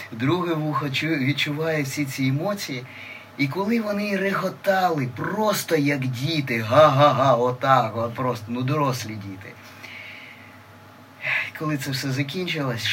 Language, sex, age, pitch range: Ukrainian, male, 20-39, 120-145 Hz